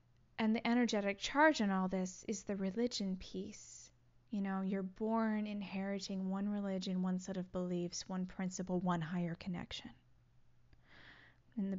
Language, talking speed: English, 150 wpm